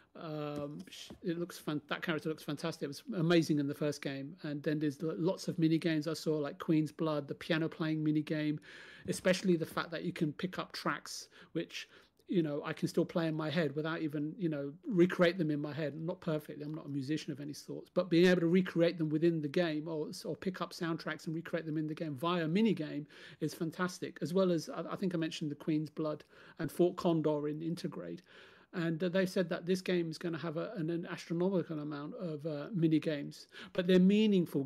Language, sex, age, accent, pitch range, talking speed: English, male, 40-59, British, 150-170 Hz, 225 wpm